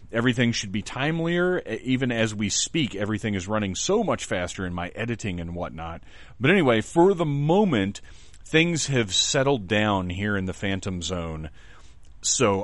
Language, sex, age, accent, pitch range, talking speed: English, male, 30-49, American, 90-115 Hz, 160 wpm